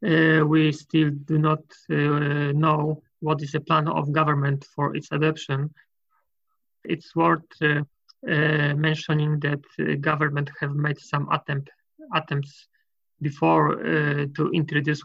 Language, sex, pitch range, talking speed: English, male, 145-155 Hz, 130 wpm